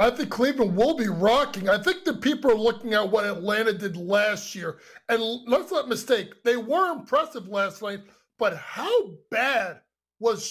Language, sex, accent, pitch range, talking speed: English, male, American, 225-320 Hz, 175 wpm